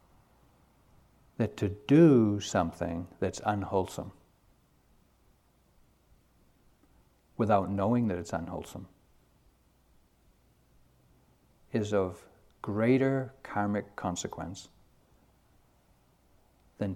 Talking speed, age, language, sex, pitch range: 60 wpm, 60-79, English, male, 95-125 Hz